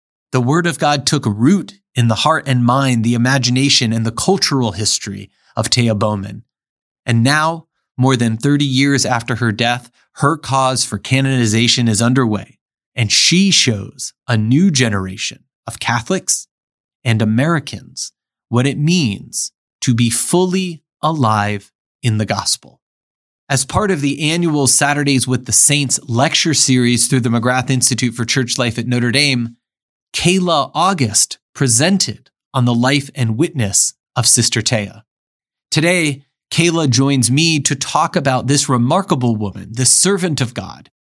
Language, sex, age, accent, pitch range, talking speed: English, male, 30-49, American, 115-145 Hz, 150 wpm